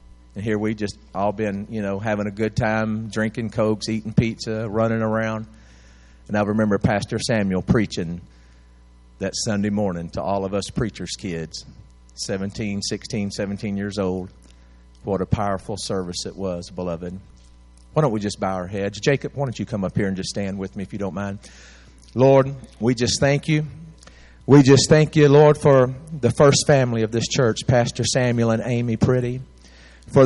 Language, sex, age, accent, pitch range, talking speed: English, male, 40-59, American, 95-140 Hz, 180 wpm